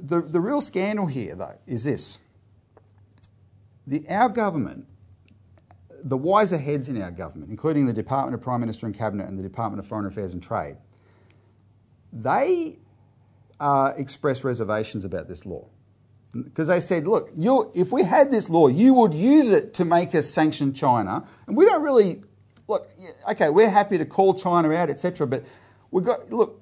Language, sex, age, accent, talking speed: English, male, 40-59, Australian, 175 wpm